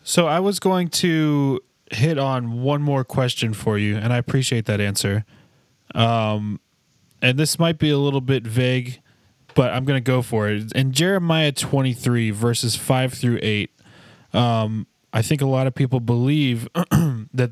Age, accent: 20-39, American